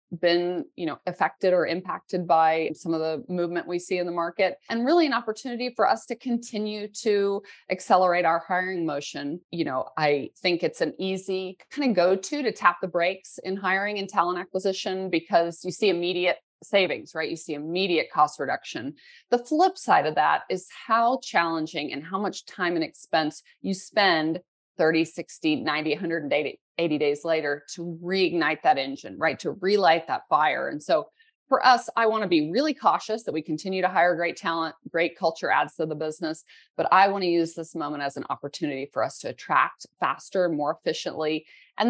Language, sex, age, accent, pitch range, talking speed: English, female, 30-49, American, 160-200 Hz, 190 wpm